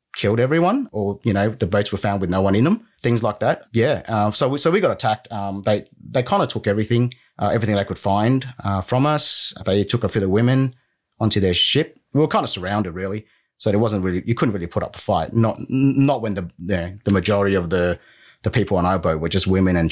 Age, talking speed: 30-49, 260 wpm